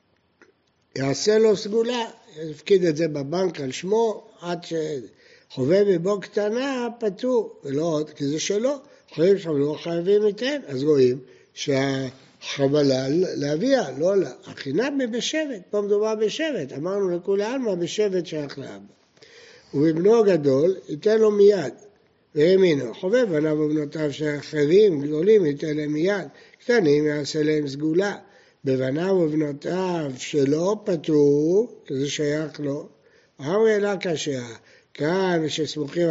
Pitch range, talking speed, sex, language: 150-210 Hz, 120 wpm, male, Hebrew